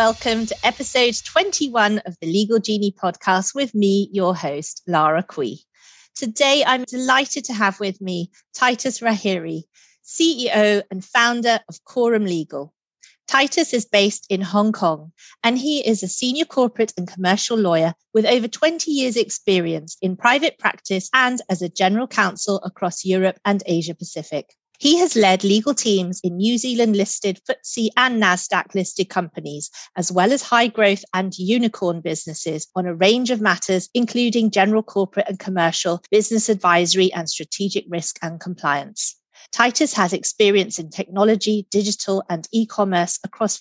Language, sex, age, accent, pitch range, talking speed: English, female, 30-49, British, 180-235 Hz, 145 wpm